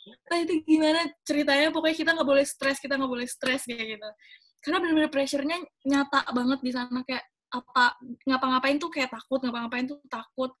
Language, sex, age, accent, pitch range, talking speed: Indonesian, female, 20-39, native, 245-280 Hz, 170 wpm